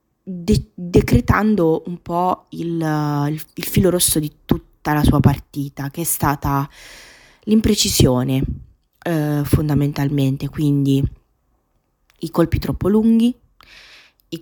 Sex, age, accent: female, 20-39, native